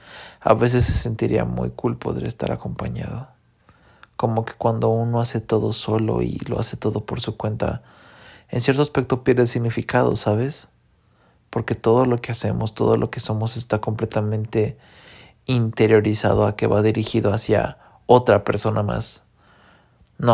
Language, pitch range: English, 105-120 Hz